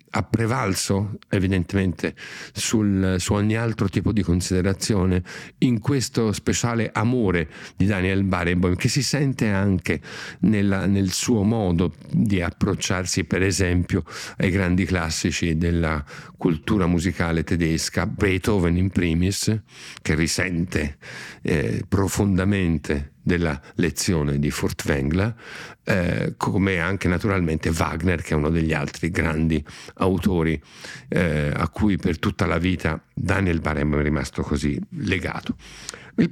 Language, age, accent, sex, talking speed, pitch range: Italian, 50-69, native, male, 120 wpm, 90-110 Hz